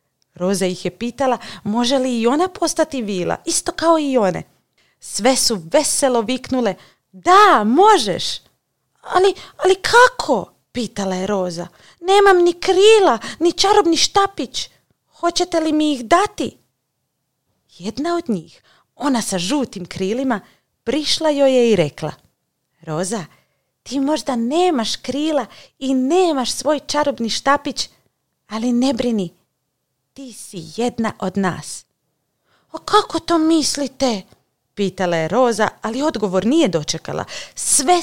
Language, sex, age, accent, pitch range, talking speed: Croatian, female, 30-49, native, 185-295 Hz, 125 wpm